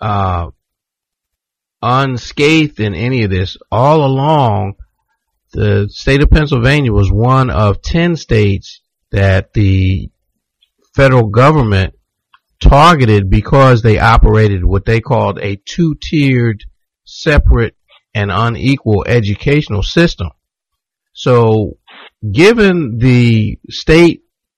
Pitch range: 105-140 Hz